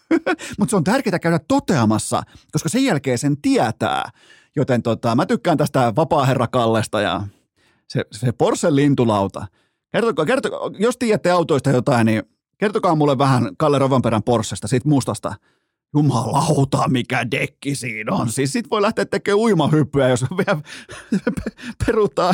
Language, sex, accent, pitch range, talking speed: Finnish, male, native, 120-155 Hz, 140 wpm